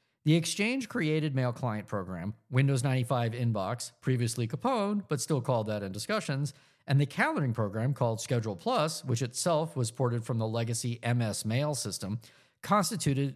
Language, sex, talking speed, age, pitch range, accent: English, male, 155 wpm, 50-69, 120-165 Hz, American